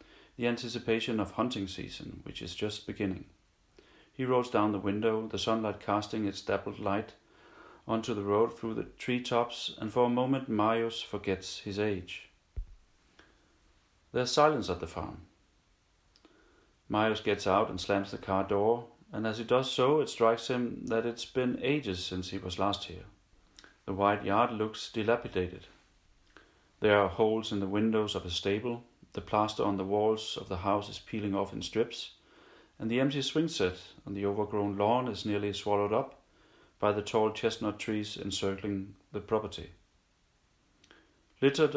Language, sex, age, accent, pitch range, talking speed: English, male, 40-59, Danish, 100-115 Hz, 160 wpm